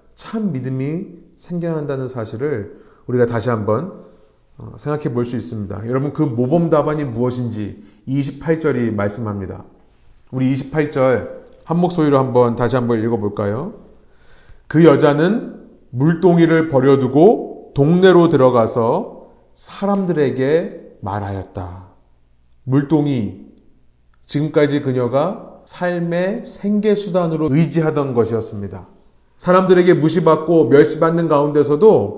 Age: 30-49